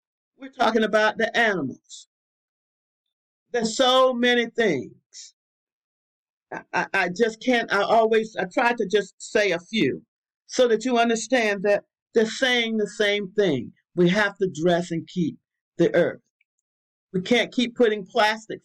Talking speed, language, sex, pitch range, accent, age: 145 wpm, English, male, 185-240 Hz, American, 50-69